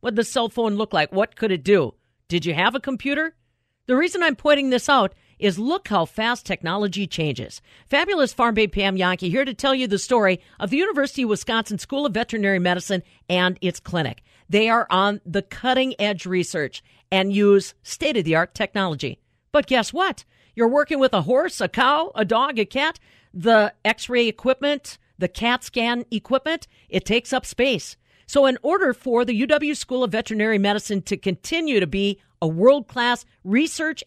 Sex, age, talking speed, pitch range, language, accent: female, 50-69, 185 wpm, 195-270 Hz, English, American